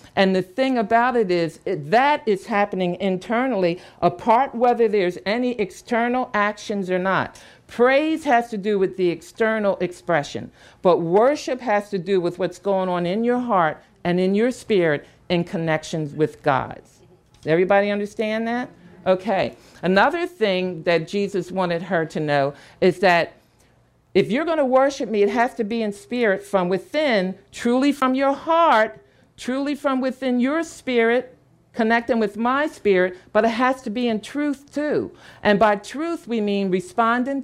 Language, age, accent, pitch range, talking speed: English, 50-69, American, 180-240 Hz, 160 wpm